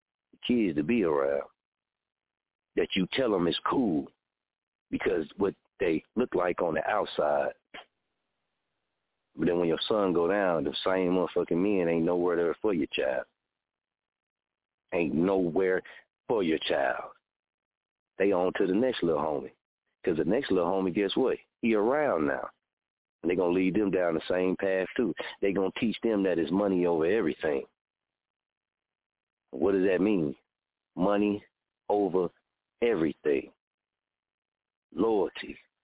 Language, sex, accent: English, male, American